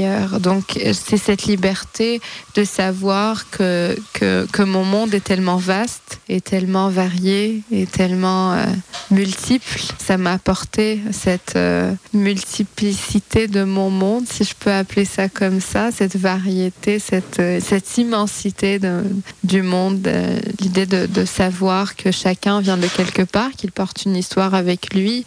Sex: female